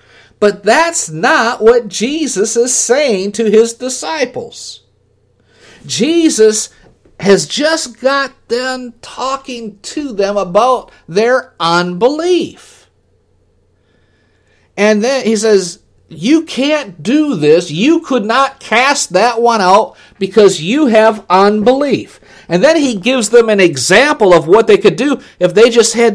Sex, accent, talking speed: male, American, 130 wpm